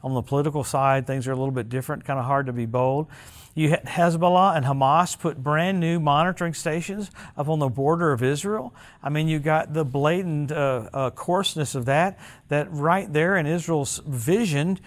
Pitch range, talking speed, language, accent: 130-170 Hz, 200 wpm, English, American